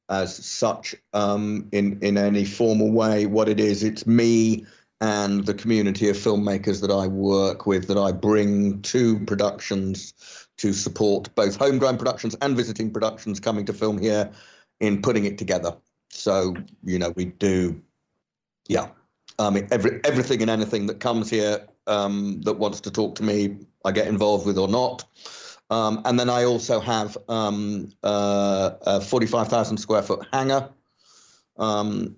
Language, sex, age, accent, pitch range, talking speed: English, male, 40-59, British, 100-115 Hz, 155 wpm